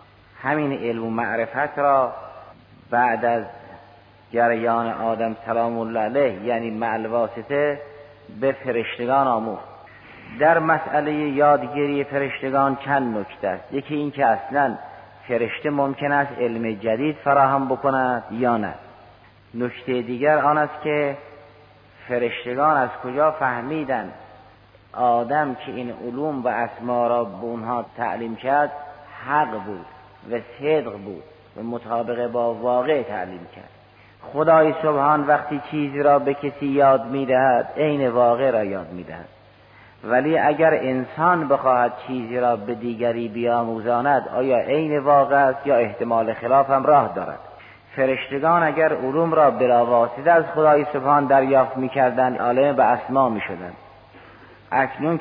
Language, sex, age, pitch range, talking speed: Persian, male, 50-69, 115-145 Hz, 125 wpm